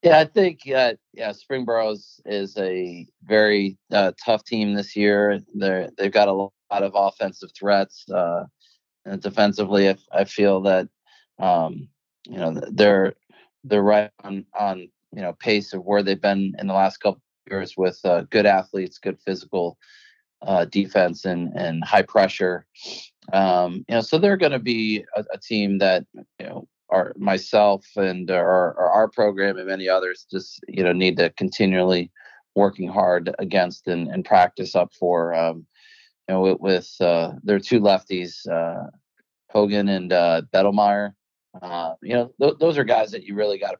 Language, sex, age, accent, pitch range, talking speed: English, male, 30-49, American, 95-105 Hz, 170 wpm